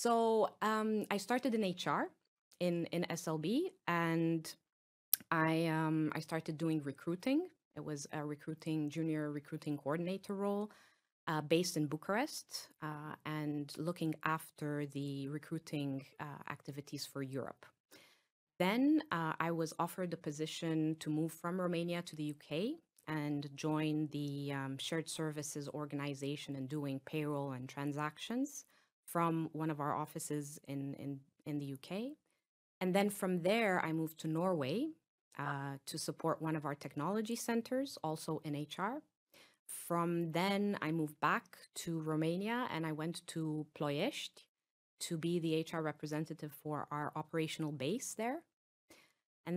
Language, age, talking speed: Romanian, 30-49, 140 wpm